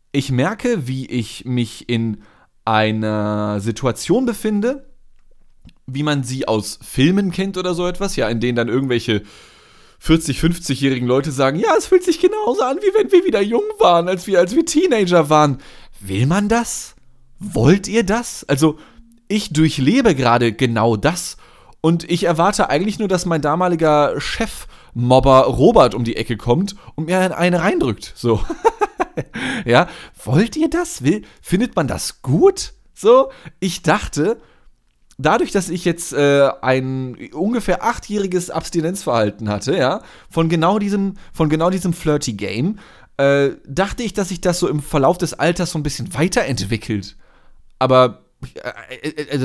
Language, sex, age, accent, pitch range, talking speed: German, male, 20-39, German, 125-185 Hz, 150 wpm